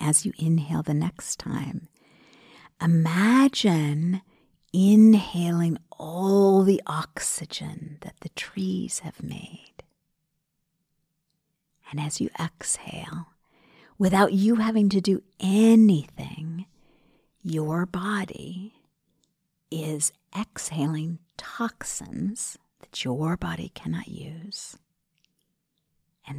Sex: female